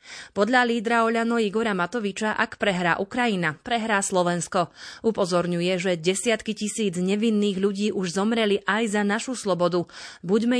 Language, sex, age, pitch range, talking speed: Slovak, female, 30-49, 180-220 Hz, 130 wpm